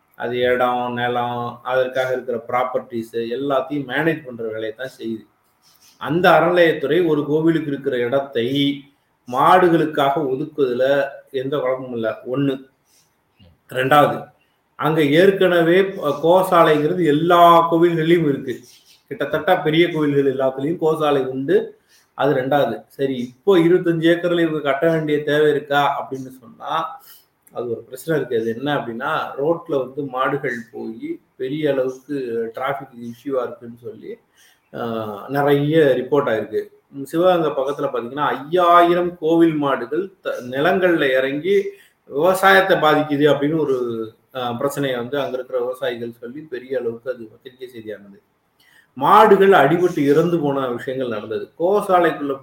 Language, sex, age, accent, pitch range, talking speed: Tamil, male, 30-49, native, 130-170 Hz, 115 wpm